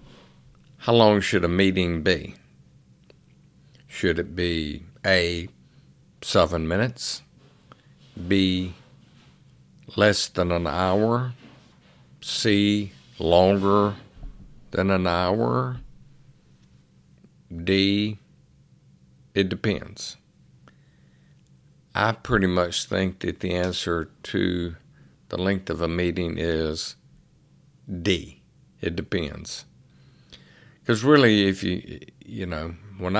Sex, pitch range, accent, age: male, 85-100 Hz, American, 50-69